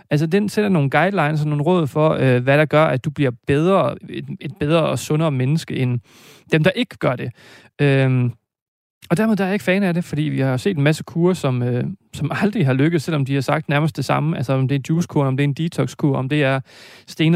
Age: 30-49